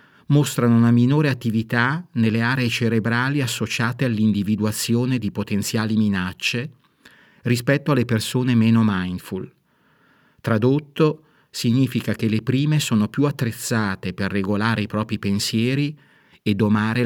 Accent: native